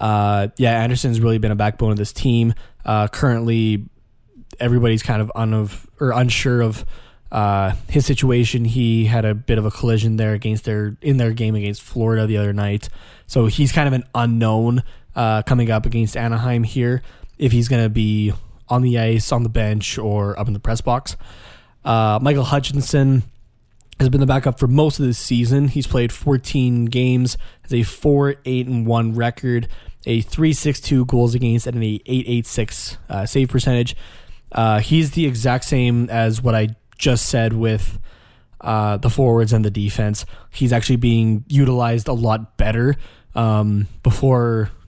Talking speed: 170 wpm